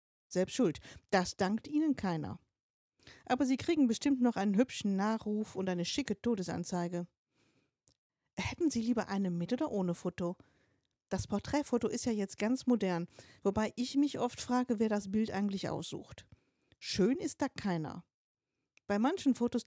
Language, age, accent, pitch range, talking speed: German, 50-69, German, 190-255 Hz, 155 wpm